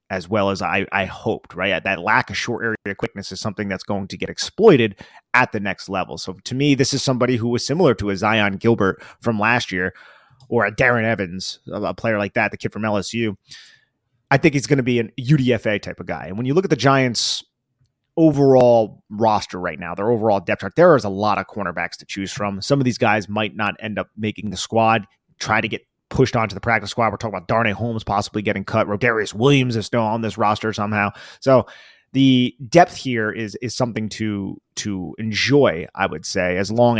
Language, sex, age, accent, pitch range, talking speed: English, male, 30-49, American, 100-125 Hz, 220 wpm